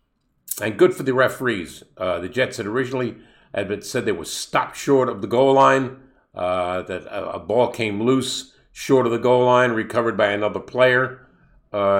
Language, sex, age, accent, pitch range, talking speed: English, male, 50-69, American, 110-150 Hz, 190 wpm